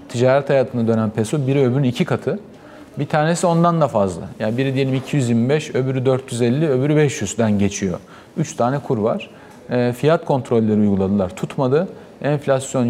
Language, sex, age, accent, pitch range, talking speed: Turkish, male, 40-59, native, 115-150 Hz, 150 wpm